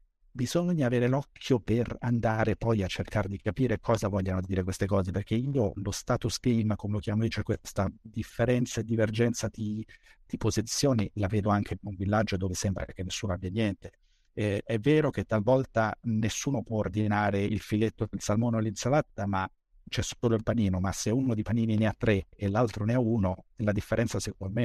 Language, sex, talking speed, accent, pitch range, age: Italian, male, 195 wpm, native, 100-120 Hz, 50-69